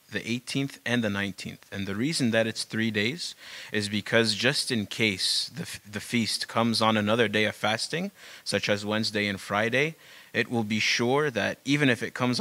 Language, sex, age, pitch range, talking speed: English, male, 30-49, 105-125 Hz, 195 wpm